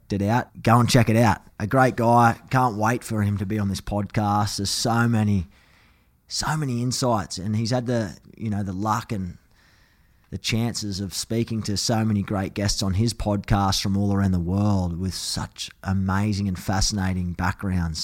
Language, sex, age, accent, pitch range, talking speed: English, male, 20-39, Australian, 95-115 Hz, 190 wpm